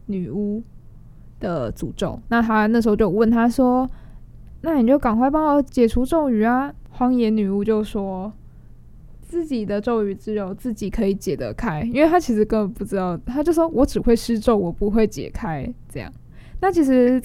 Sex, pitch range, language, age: female, 200-245 Hz, Chinese, 10-29